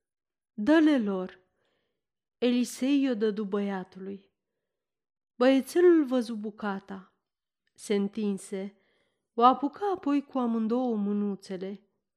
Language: Romanian